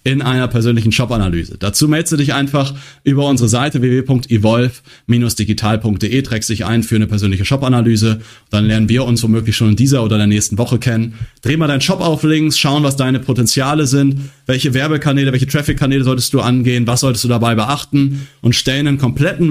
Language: German